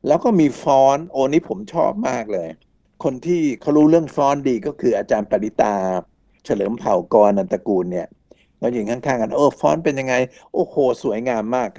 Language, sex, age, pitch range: Thai, male, 60-79, 120-155 Hz